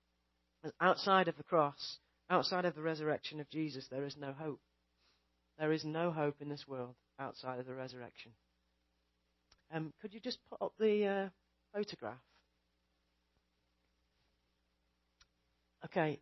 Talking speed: 130 wpm